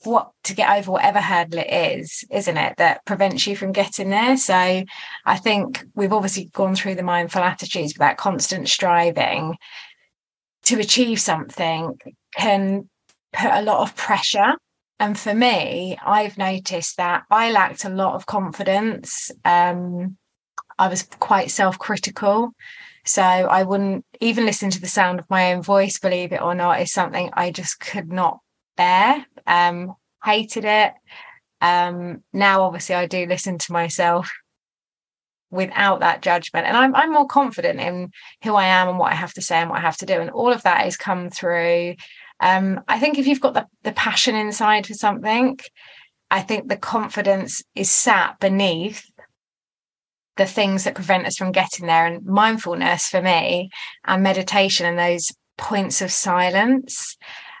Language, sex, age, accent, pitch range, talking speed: English, female, 20-39, British, 180-215 Hz, 165 wpm